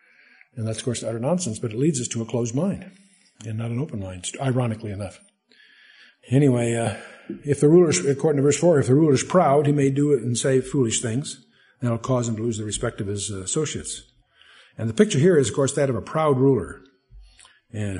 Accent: American